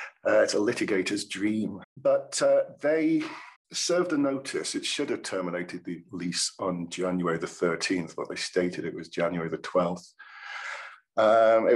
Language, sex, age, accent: English, male, 50-69, British